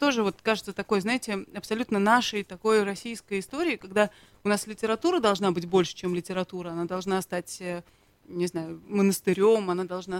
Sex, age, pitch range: female, 30-49, 180-220 Hz